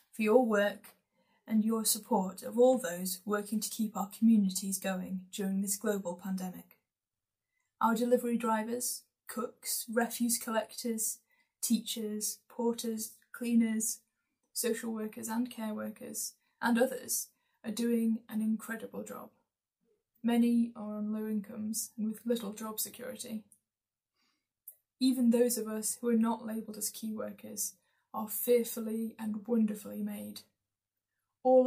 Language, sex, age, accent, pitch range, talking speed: English, female, 10-29, British, 185-230 Hz, 125 wpm